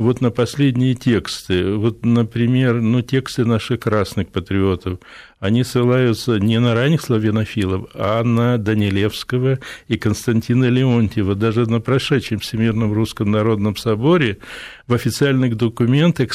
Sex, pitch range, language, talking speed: male, 115-150 Hz, Russian, 120 wpm